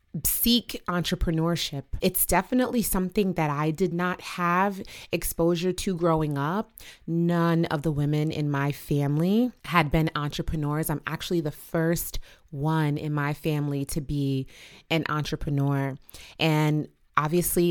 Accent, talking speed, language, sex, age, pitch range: American, 130 wpm, English, female, 30-49, 150-185 Hz